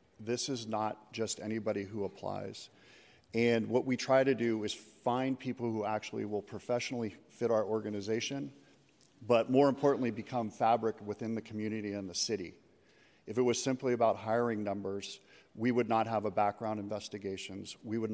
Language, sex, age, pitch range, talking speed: English, male, 50-69, 105-120 Hz, 165 wpm